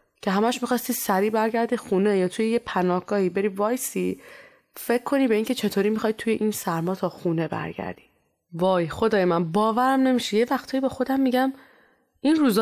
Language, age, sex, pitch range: Persian, 20-39, female, 180-235 Hz